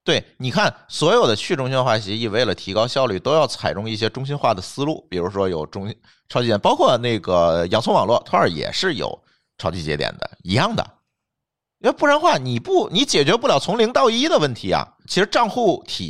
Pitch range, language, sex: 105-145 Hz, Chinese, male